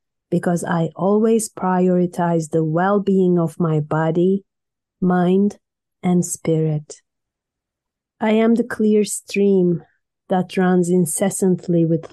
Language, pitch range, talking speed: English, 165-195 Hz, 110 wpm